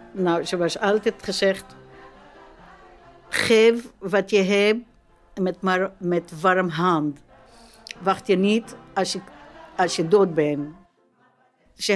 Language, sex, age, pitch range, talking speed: Dutch, female, 60-79, 165-195 Hz, 120 wpm